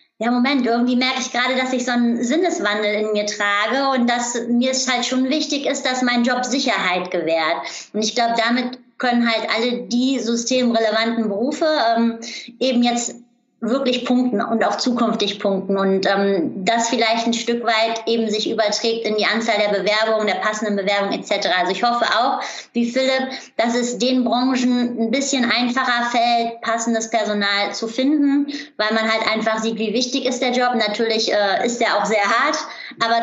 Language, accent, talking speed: German, German, 180 wpm